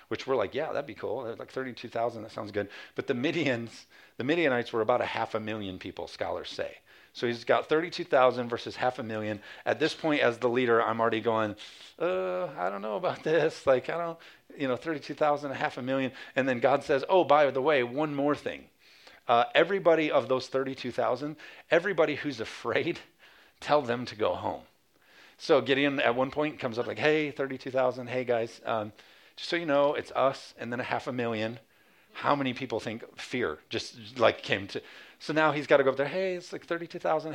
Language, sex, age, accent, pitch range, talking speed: English, male, 40-59, American, 120-150 Hz, 210 wpm